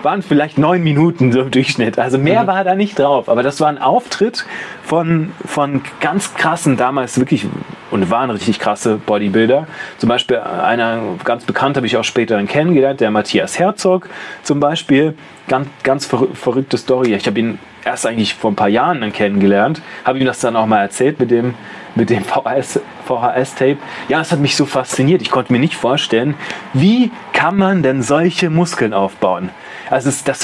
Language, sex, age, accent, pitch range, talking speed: German, male, 30-49, German, 125-170 Hz, 180 wpm